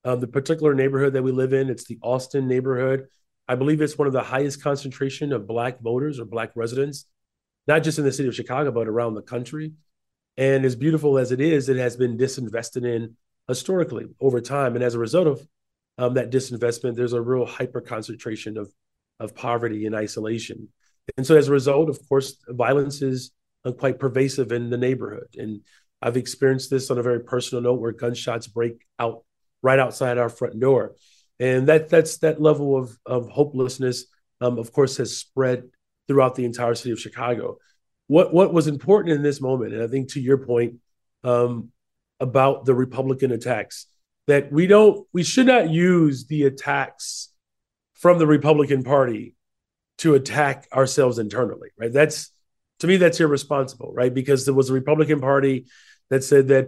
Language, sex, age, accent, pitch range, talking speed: English, male, 30-49, American, 120-140 Hz, 180 wpm